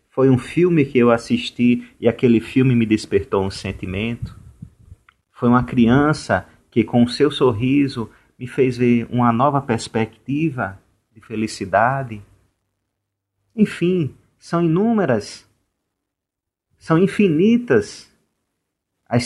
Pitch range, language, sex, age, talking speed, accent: 105-130 Hz, Portuguese, male, 30-49, 105 wpm, Brazilian